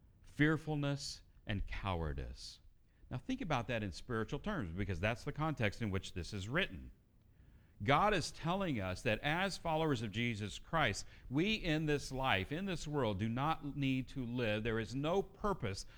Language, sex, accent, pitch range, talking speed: English, male, American, 100-145 Hz, 170 wpm